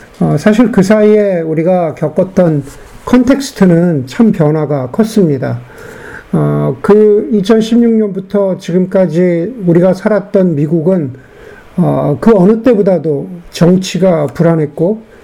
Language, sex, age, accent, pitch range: Korean, male, 50-69, native, 165-215 Hz